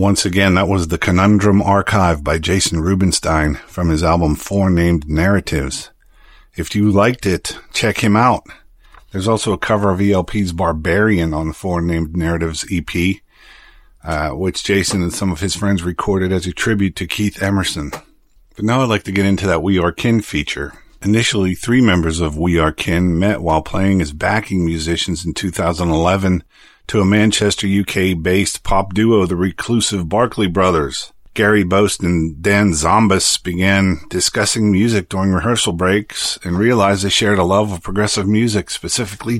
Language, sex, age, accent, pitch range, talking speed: English, male, 50-69, American, 90-105 Hz, 165 wpm